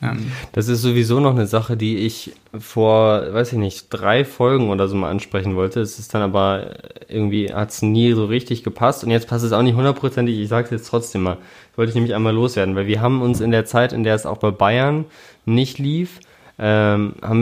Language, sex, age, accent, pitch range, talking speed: German, male, 20-39, German, 100-120 Hz, 230 wpm